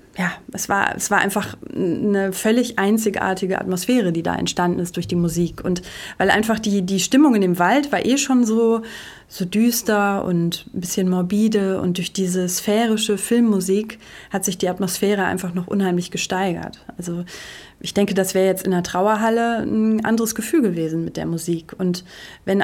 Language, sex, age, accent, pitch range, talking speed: German, female, 30-49, German, 185-215 Hz, 175 wpm